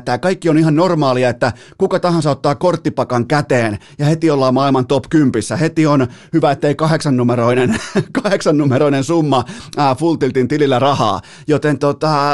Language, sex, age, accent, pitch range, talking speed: Finnish, male, 30-49, native, 130-165 Hz, 160 wpm